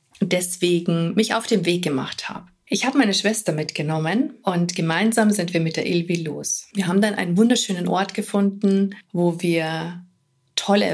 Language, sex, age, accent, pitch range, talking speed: German, female, 50-69, German, 180-225 Hz, 165 wpm